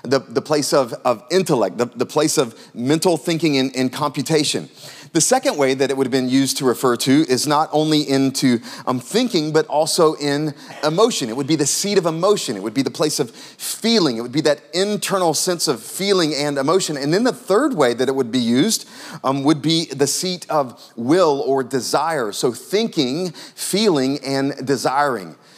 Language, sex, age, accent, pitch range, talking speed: English, male, 30-49, American, 135-170 Hz, 195 wpm